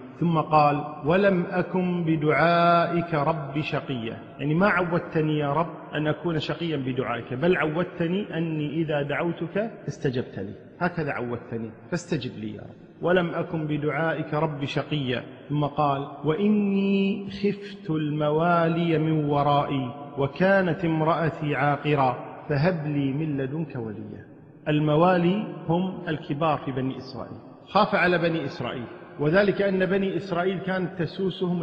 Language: Arabic